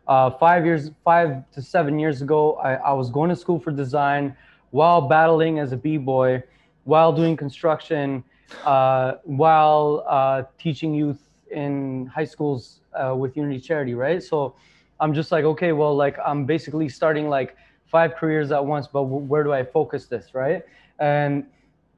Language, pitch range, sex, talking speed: English, 140-165 Hz, male, 165 wpm